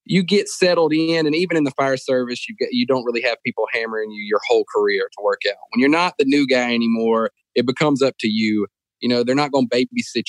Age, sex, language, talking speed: 30-49, male, English, 255 wpm